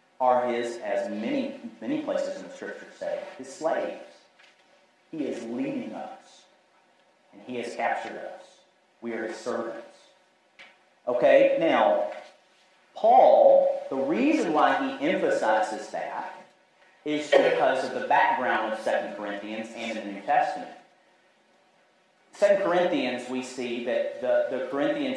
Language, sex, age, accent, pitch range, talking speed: English, male, 40-59, American, 135-195 Hz, 130 wpm